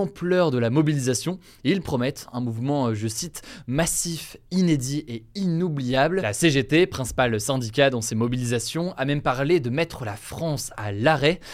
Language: French